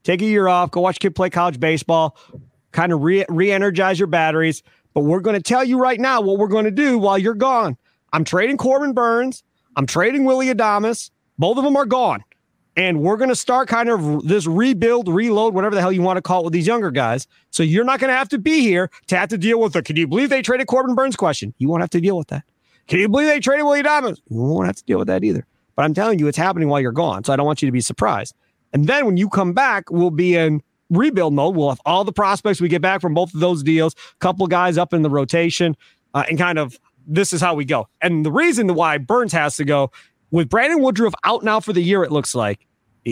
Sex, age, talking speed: male, 40-59, 260 wpm